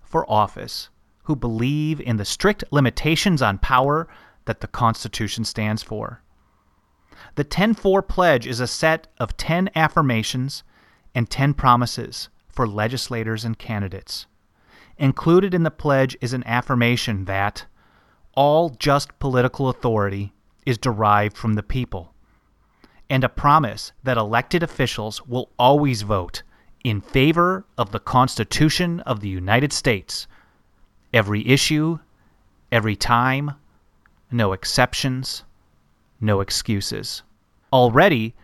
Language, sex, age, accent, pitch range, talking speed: English, male, 30-49, American, 105-145 Hz, 115 wpm